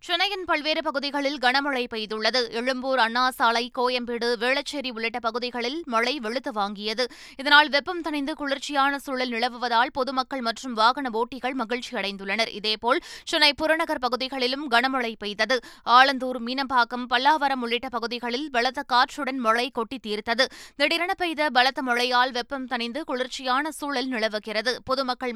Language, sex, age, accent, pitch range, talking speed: Tamil, female, 20-39, native, 240-285 Hz, 125 wpm